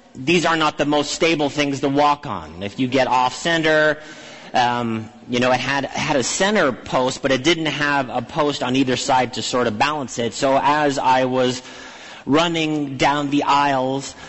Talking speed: 195 wpm